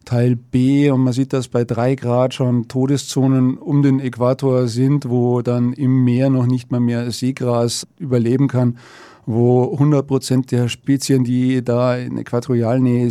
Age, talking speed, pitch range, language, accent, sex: 40-59, 160 wpm, 125-145 Hz, German, German, male